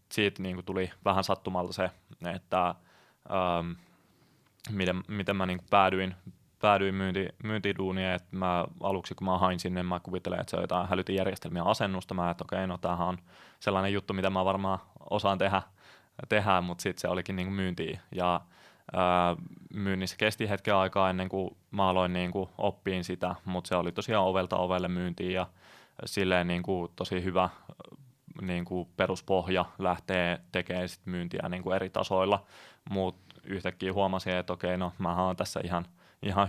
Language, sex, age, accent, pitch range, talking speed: Finnish, male, 20-39, native, 90-95 Hz, 155 wpm